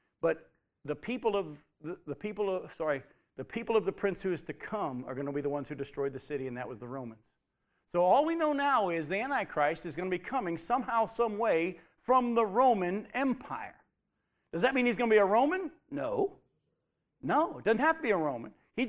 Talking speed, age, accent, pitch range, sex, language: 225 wpm, 50-69, American, 150-230 Hz, male, English